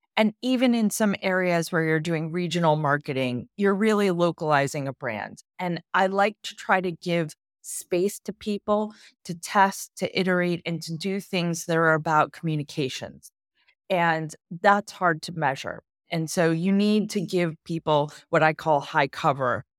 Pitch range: 140-180 Hz